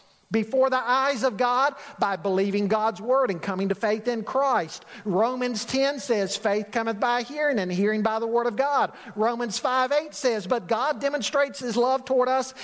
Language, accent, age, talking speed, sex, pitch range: English, American, 50-69, 185 wpm, male, 195-255 Hz